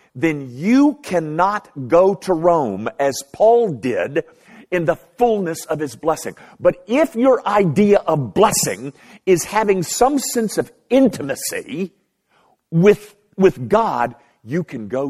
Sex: male